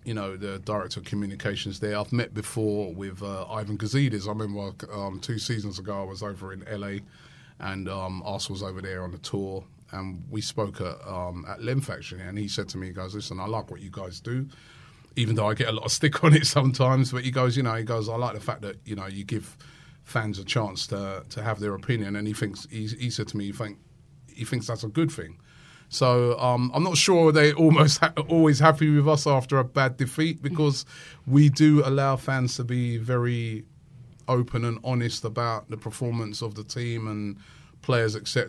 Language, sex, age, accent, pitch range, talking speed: English, male, 30-49, British, 105-135 Hz, 220 wpm